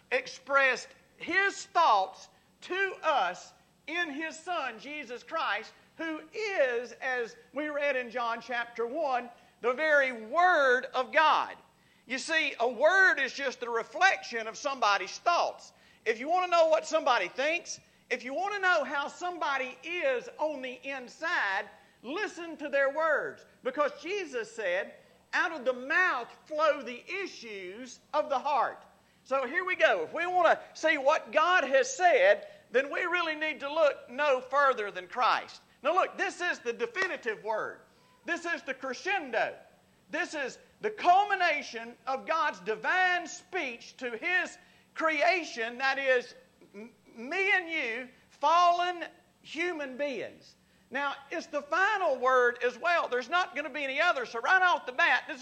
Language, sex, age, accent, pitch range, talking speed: English, male, 50-69, American, 255-350 Hz, 155 wpm